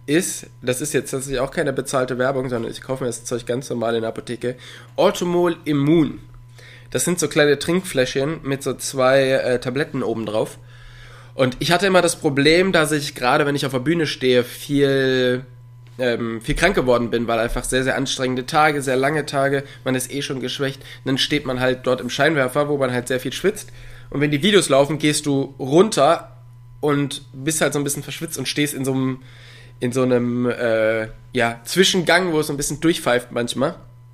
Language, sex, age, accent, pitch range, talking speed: German, male, 20-39, German, 120-150 Hz, 200 wpm